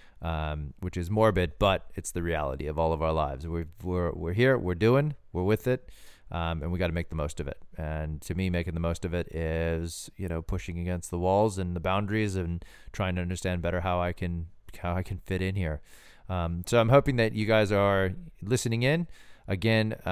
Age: 30-49